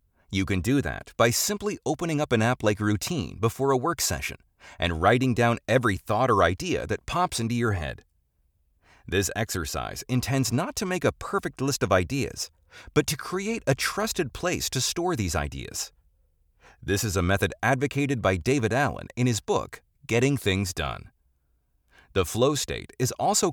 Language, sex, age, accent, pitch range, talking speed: English, male, 30-49, American, 95-145 Hz, 175 wpm